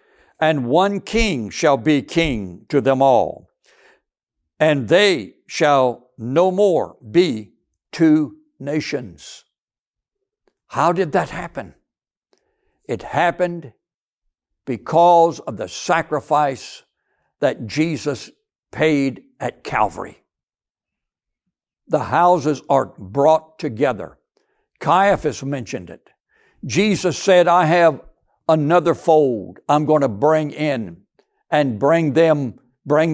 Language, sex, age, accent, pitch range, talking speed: English, male, 60-79, American, 135-180 Hz, 100 wpm